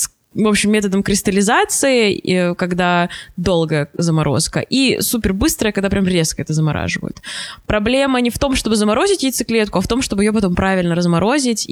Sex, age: female, 20-39